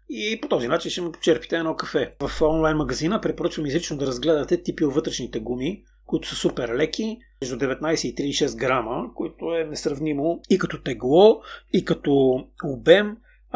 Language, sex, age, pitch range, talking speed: Bulgarian, male, 30-49, 145-180 Hz, 165 wpm